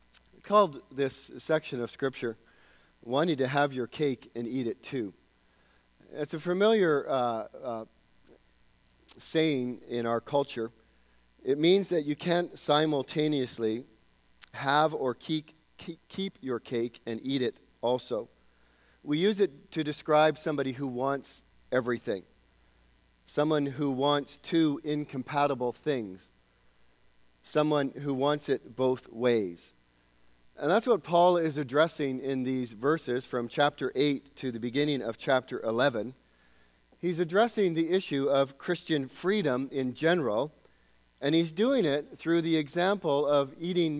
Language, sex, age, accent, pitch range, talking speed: English, male, 40-59, American, 115-160 Hz, 130 wpm